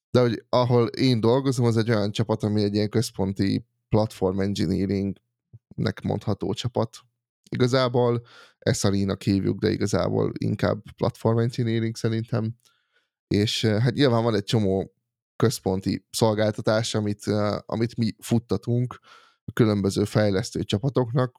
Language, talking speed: Hungarian, 120 wpm